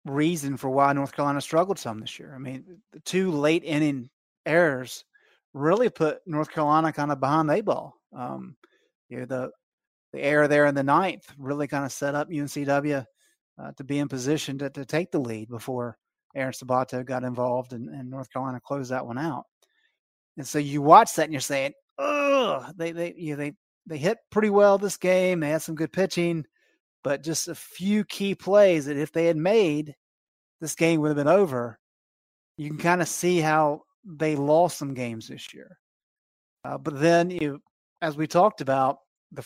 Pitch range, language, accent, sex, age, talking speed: 140-170 Hz, English, American, male, 30-49, 195 wpm